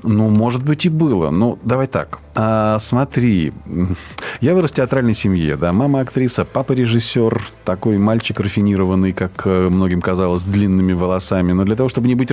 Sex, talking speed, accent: male, 165 wpm, native